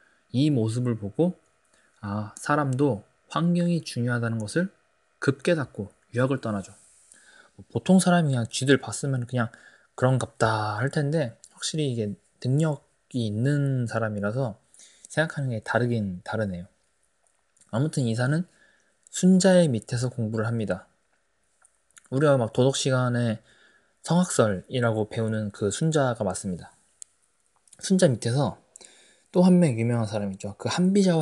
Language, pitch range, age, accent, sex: Korean, 110-150 Hz, 20-39, native, male